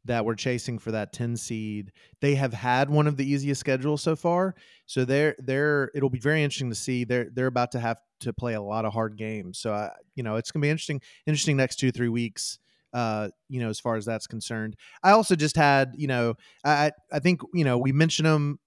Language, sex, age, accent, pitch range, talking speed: English, male, 30-49, American, 120-140 Hz, 240 wpm